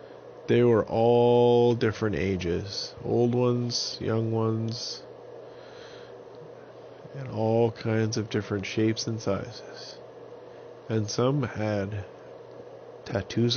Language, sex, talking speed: English, male, 95 wpm